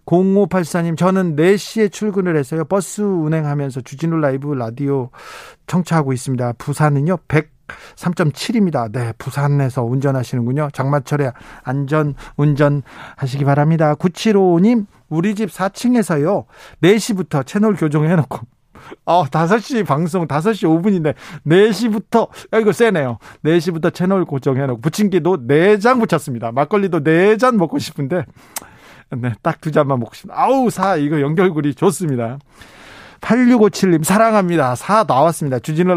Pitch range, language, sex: 140-190 Hz, Korean, male